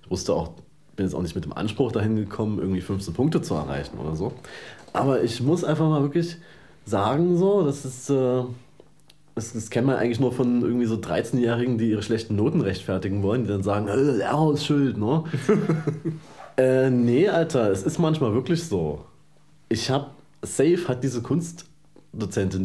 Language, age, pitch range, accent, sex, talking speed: German, 30-49, 95-125 Hz, German, male, 165 wpm